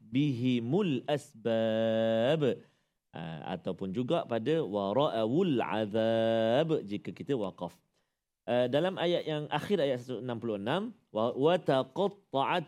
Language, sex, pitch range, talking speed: Malayalam, male, 125-175 Hz, 100 wpm